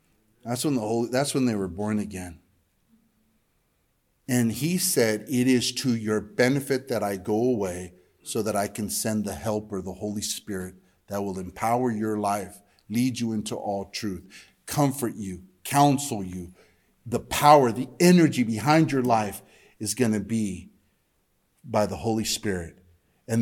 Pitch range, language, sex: 100-150 Hz, English, male